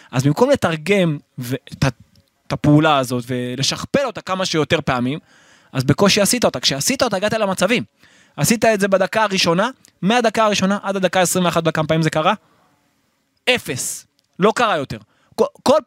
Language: Hebrew